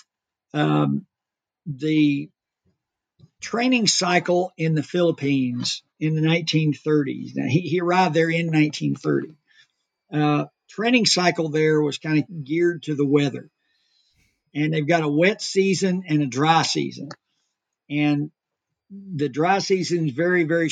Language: English